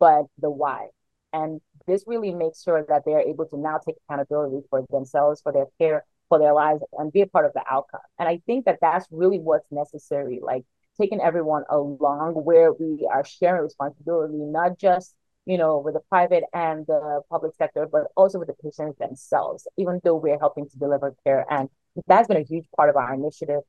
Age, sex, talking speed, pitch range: 30-49, female, 205 wpm, 140-165 Hz